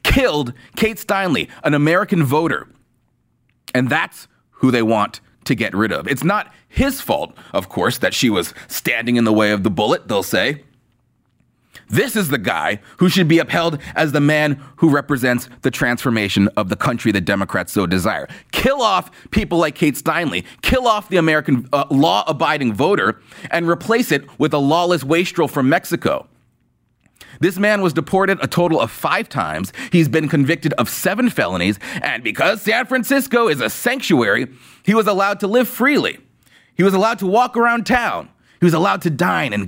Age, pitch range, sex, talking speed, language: 30-49, 125-195 Hz, male, 180 wpm, English